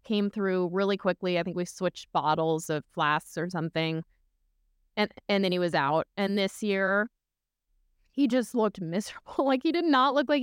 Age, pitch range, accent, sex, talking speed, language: 20-39, 160-195 Hz, American, female, 185 wpm, English